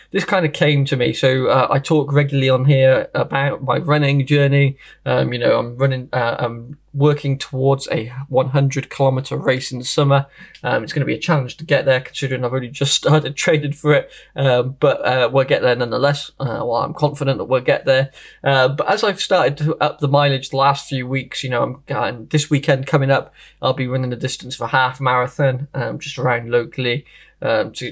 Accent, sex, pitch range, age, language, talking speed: British, male, 125-145 Hz, 10-29, English, 220 wpm